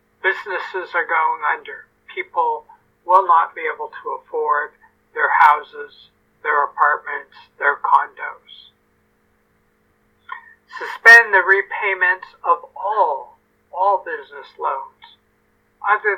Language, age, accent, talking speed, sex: English, 60-79, American, 95 wpm, male